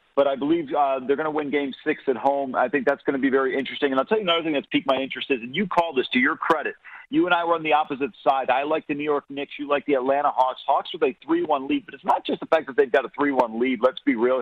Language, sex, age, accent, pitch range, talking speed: English, male, 40-59, American, 135-165 Hz, 320 wpm